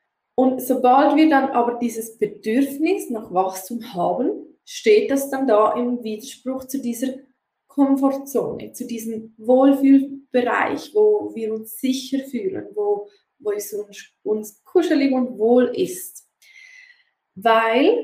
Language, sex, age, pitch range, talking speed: German, female, 20-39, 230-275 Hz, 125 wpm